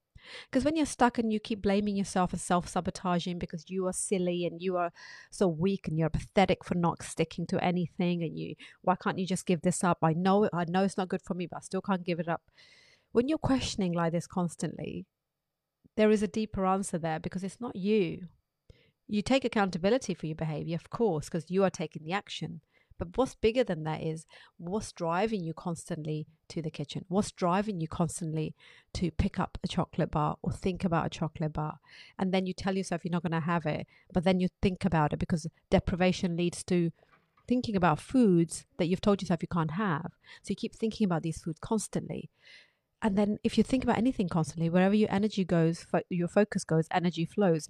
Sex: female